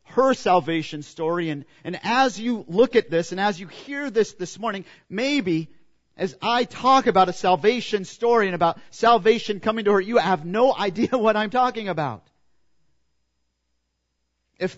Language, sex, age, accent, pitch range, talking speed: English, male, 40-59, American, 150-230 Hz, 160 wpm